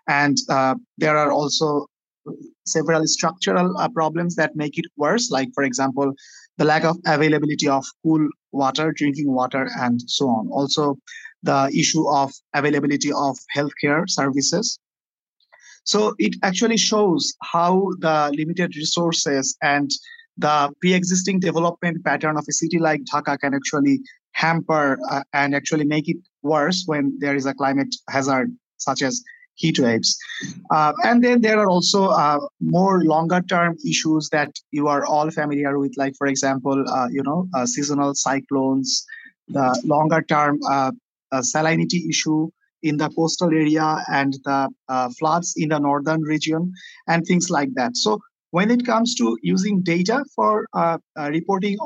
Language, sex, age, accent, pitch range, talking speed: English, male, 30-49, Indian, 140-180 Hz, 155 wpm